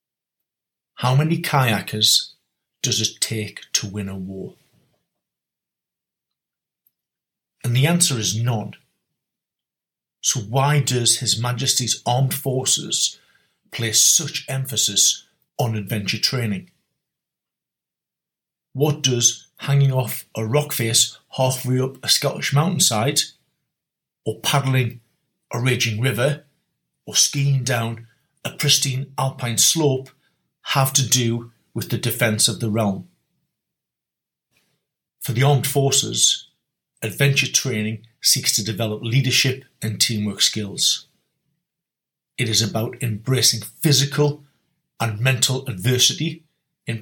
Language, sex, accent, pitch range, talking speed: English, male, British, 110-135 Hz, 105 wpm